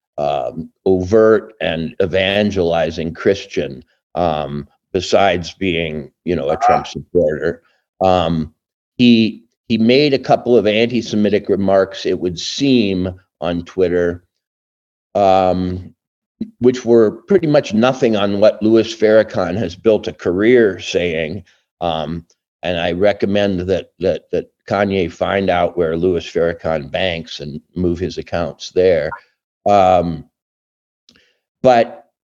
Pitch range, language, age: 90-115 Hz, English, 50-69